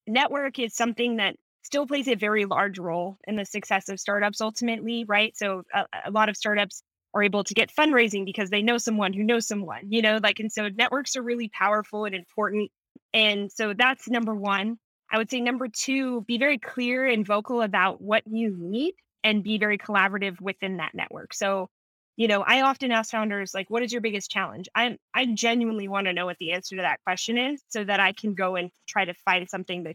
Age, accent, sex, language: 20-39, American, female, English